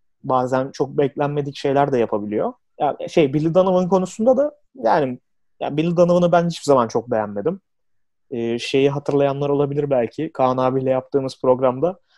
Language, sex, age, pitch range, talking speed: Turkish, male, 30-49, 130-170 Hz, 140 wpm